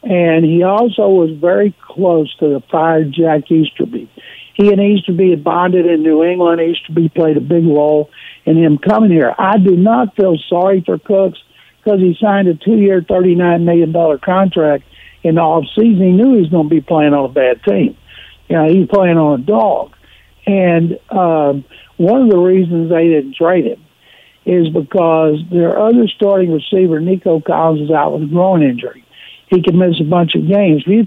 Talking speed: 195 wpm